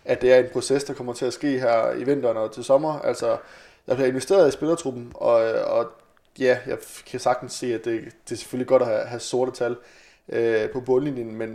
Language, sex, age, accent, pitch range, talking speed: Danish, male, 20-39, native, 120-140 Hz, 225 wpm